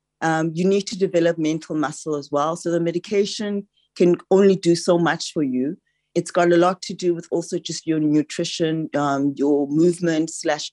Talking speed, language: 190 wpm, English